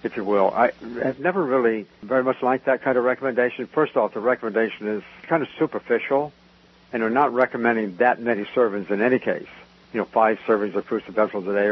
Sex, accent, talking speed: male, American, 210 wpm